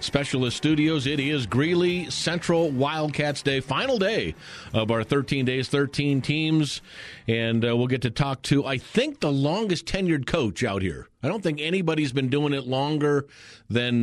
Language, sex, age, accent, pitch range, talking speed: English, male, 40-59, American, 115-150 Hz, 170 wpm